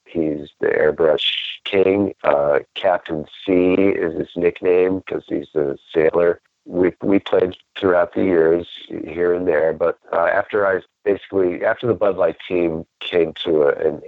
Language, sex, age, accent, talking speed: English, male, 50-69, American, 155 wpm